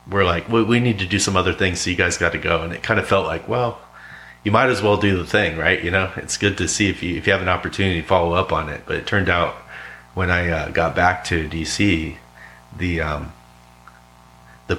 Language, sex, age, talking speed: English, male, 30-49, 250 wpm